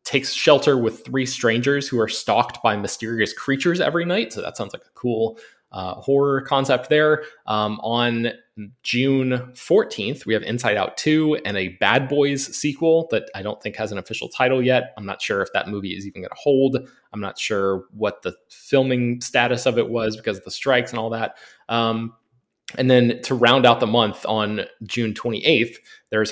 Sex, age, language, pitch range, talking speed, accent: male, 20-39, English, 105-130 Hz, 195 wpm, American